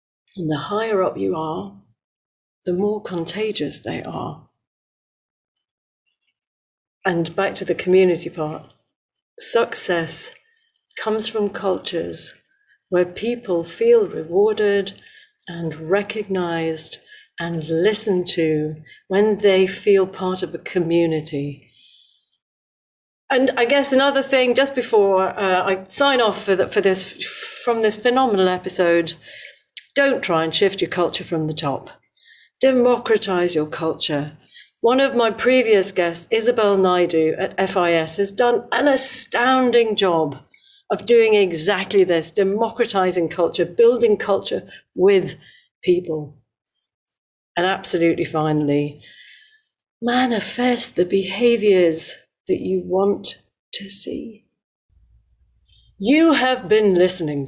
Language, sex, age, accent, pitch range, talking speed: English, female, 50-69, British, 165-240 Hz, 110 wpm